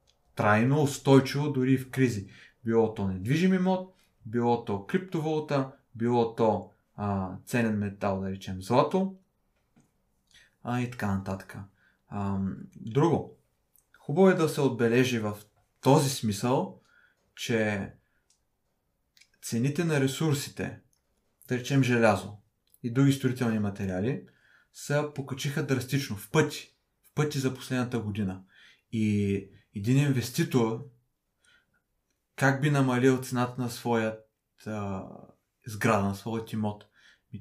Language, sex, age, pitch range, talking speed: Bulgarian, male, 30-49, 105-140 Hz, 110 wpm